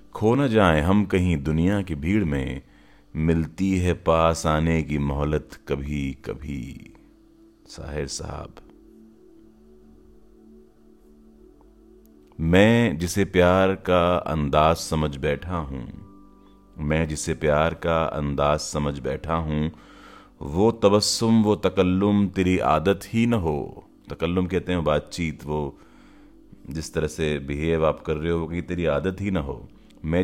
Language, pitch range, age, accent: Hindi, 75-90 Hz, 40-59, native